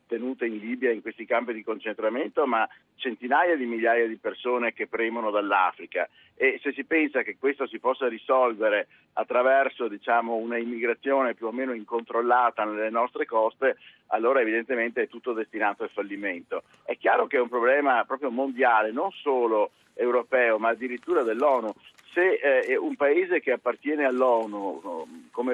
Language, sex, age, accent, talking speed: Italian, male, 50-69, native, 155 wpm